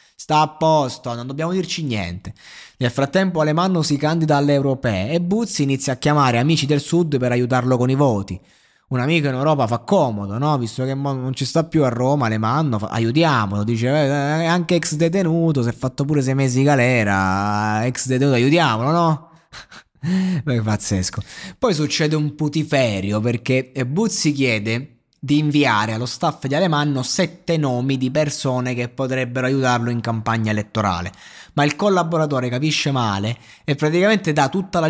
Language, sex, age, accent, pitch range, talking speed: Italian, male, 20-39, native, 120-155 Hz, 165 wpm